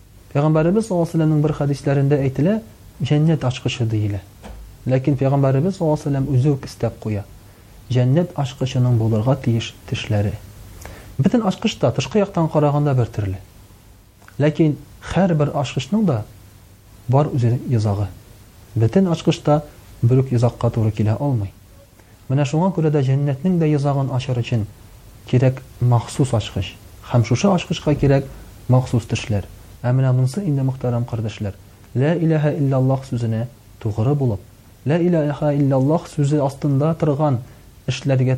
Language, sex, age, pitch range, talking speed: Russian, male, 40-59, 105-145 Hz, 95 wpm